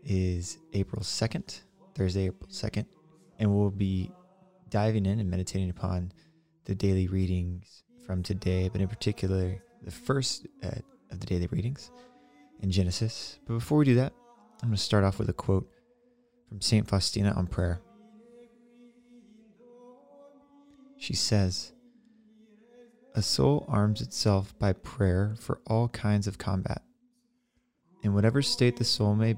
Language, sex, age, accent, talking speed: English, male, 20-39, American, 140 wpm